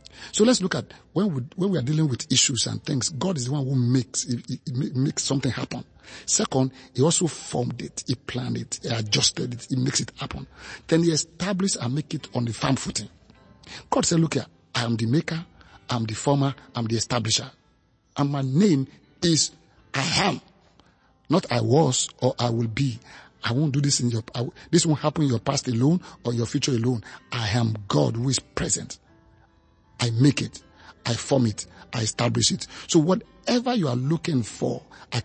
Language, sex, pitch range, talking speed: English, male, 115-150 Hz, 205 wpm